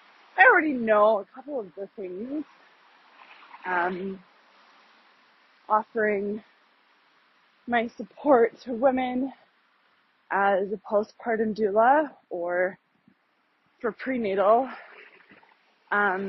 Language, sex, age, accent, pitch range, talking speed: English, female, 20-39, American, 200-265 Hz, 80 wpm